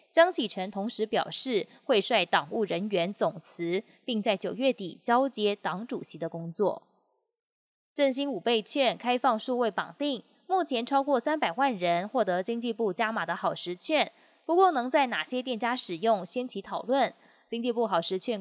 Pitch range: 195-260 Hz